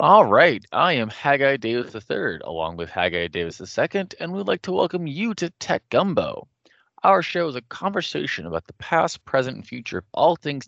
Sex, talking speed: male, 195 wpm